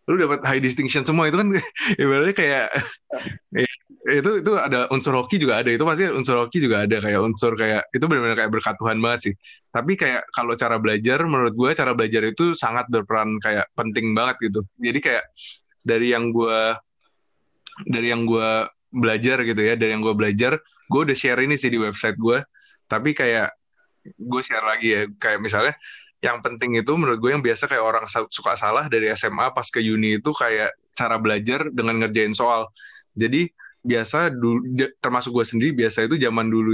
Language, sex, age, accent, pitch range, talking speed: Indonesian, male, 20-39, native, 110-130 Hz, 180 wpm